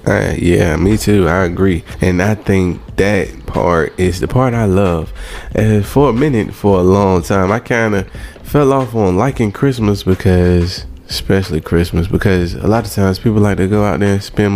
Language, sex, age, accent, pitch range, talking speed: English, male, 20-39, American, 85-105 Hz, 200 wpm